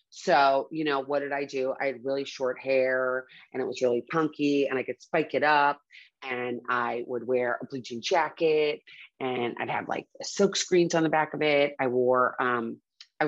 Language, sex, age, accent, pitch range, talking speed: English, female, 30-49, American, 130-150 Hz, 205 wpm